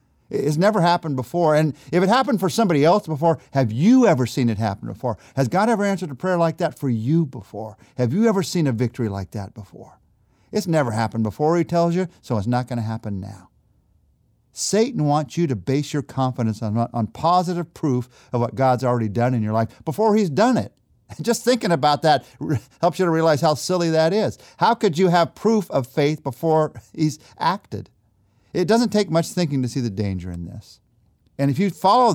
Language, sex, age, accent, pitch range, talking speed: English, male, 50-69, American, 115-170 Hz, 210 wpm